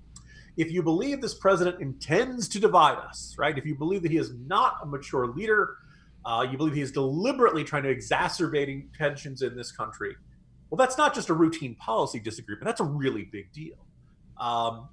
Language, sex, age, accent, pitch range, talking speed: English, male, 40-59, American, 125-165 Hz, 190 wpm